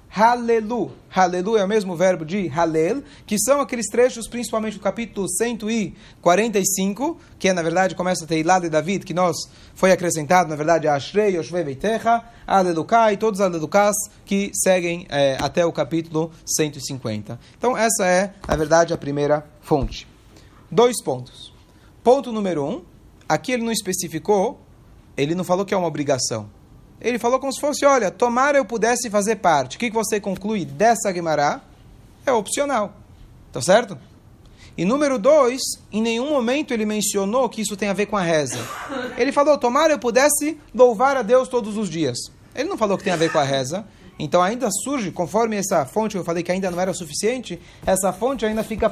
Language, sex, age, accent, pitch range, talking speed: Portuguese, male, 30-49, Brazilian, 170-230 Hz, 180 wpm